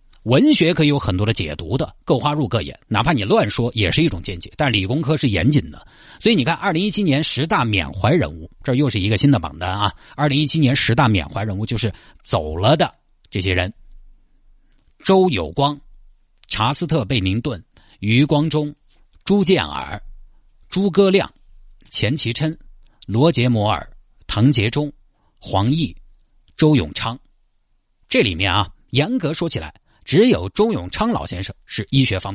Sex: male